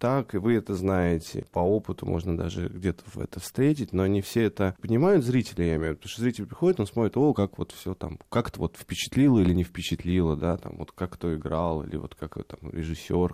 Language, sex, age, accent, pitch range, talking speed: Russian, male, 20-39, native, 85-110 Hz, 225 wpm